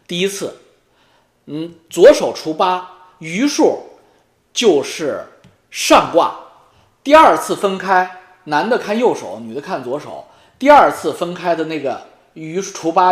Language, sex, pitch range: Chinese, male, 170-275 Hz